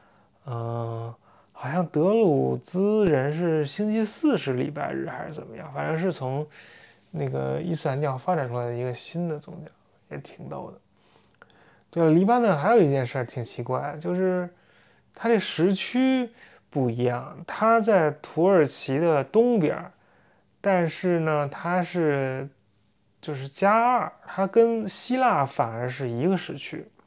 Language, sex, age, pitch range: English, male, 20-39, 130-195 Hz